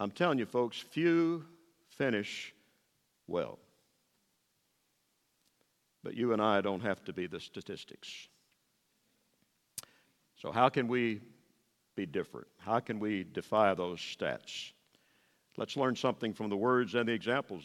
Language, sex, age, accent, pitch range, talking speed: English, male, 50-69, American, 110-155 Hz, 130 wpm